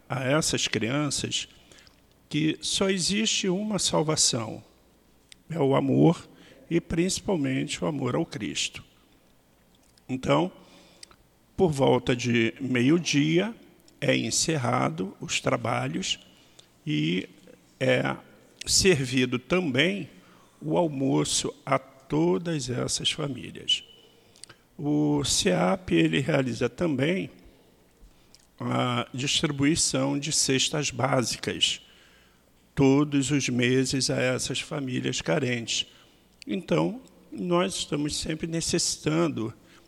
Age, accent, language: 50-69, Brazilian, Portuguese